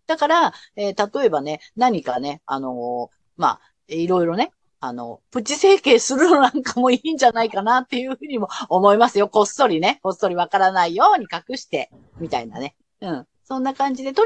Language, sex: Japanese, female